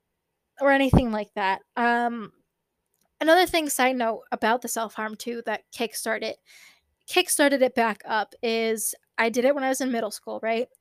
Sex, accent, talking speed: female, American, 170 wpm